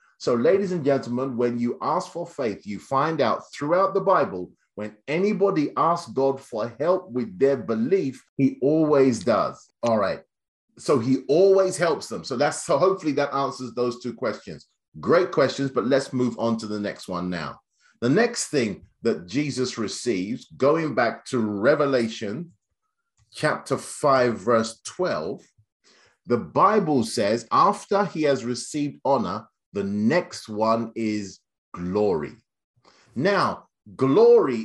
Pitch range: 120-190 Hz